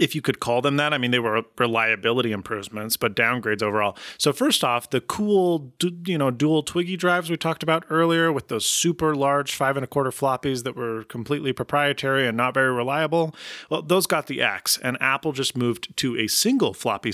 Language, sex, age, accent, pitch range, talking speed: English, male, 30-49, American, 110-135 Hz, 205 wpm